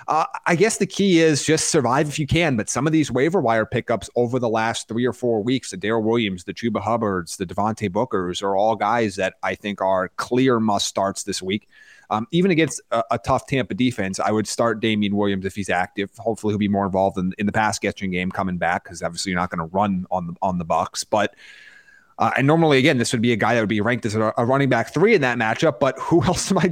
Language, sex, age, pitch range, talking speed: English, male, 30-49, 100-125 Hz, 255 wpm